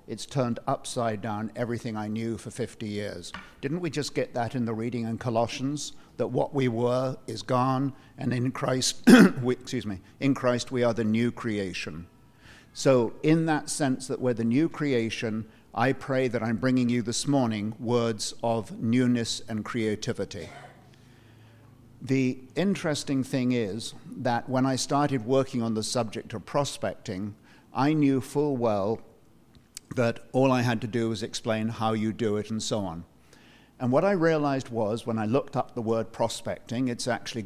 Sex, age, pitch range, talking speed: male, 50-69, 110-130 Hz, 170 wpm